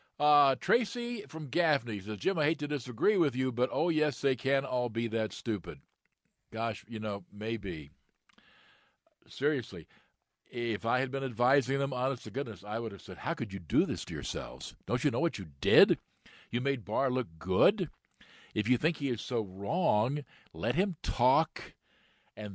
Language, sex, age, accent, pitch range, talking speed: English, male, 50-69, American, 100-135 Hz, 180 wpm